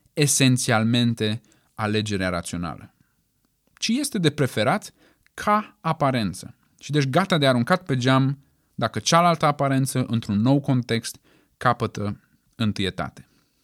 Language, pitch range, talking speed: Romanian, 115-165 Hz, 105 wpm